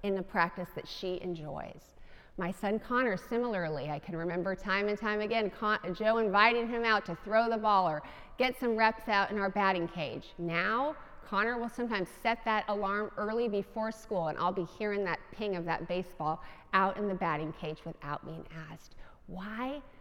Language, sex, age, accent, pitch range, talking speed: English, female, 40-59, American, 185-240 Hz, 185 wpm